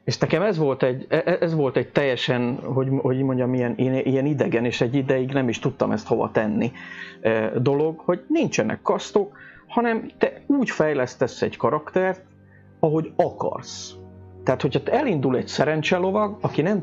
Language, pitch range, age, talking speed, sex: Hungarian, 120-165 Hz, 40-59, 145 wpm, male